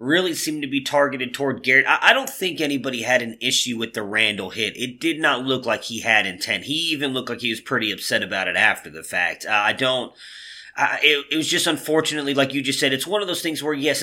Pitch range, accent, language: 120-155 Hz, American, English